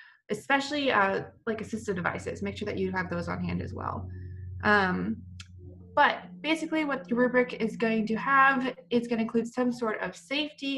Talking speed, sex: 180 wpm, female